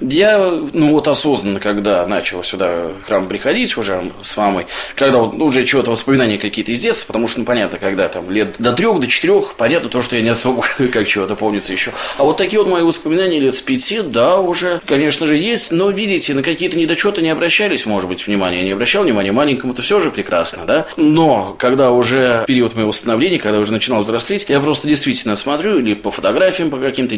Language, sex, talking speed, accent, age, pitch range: Russian, male, 210 wpm, native, 20-39, 115-160 Hz